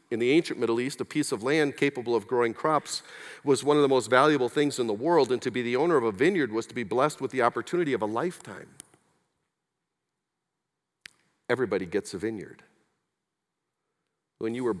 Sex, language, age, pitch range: male, English, 50-69, 115-175 Hz